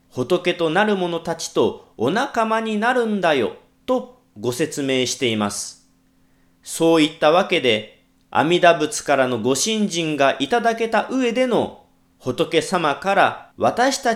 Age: 40-59